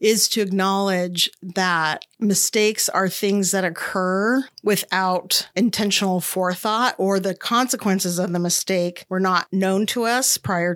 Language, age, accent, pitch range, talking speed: English, 40-59, American, 180-215 Hz, 135 wpm